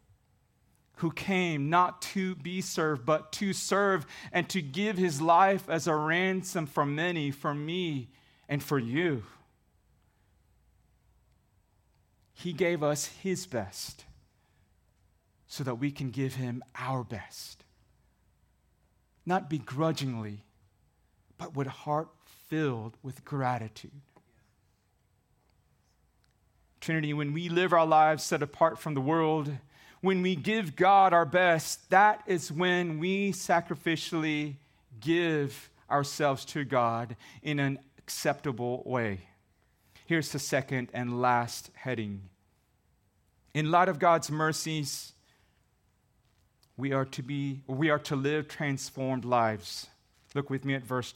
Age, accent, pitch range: 30-49, American, 125-165 Hz